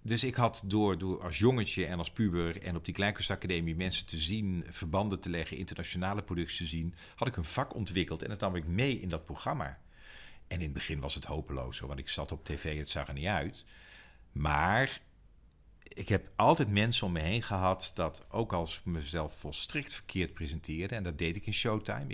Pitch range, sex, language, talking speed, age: 80-105 Hz, male, English, 205 wpm, 50-69